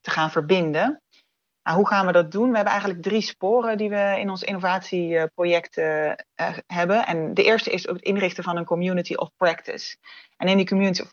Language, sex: Dutch, female